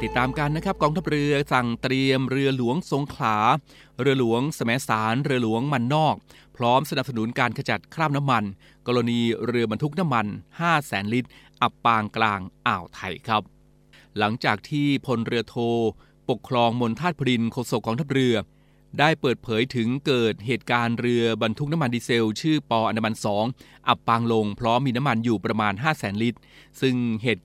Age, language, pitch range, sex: 20-39, Thai, 110-135 Hz, male